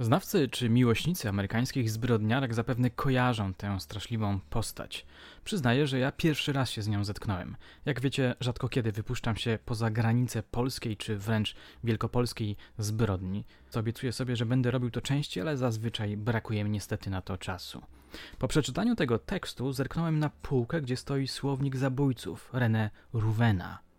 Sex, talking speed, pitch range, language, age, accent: male, 150 wpm, 105-130 Hz, Polish, 20-39, native